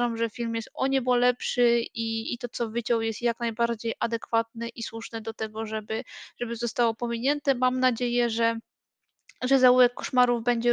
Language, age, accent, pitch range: Polish, 20-39, native, 230-265 Hz